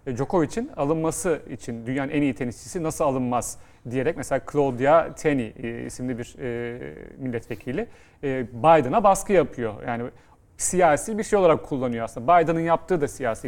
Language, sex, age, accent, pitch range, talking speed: Turkish, male, 40-59, native, 125-170 Hz, 135 wpm